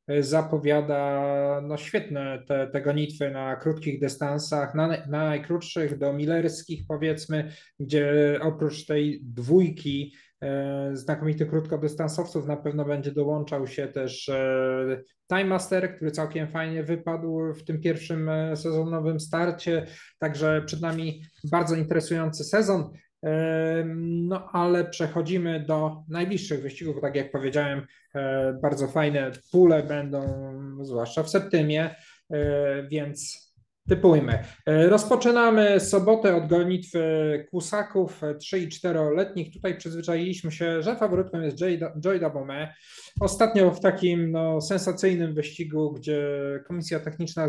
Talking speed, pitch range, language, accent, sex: 110 wpm, 150-170 Hz, Polish, native, male